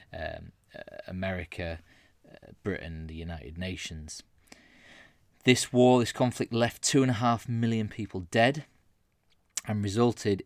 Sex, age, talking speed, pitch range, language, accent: male, 20-39, 125 wpm, 90-105 Hz, English, British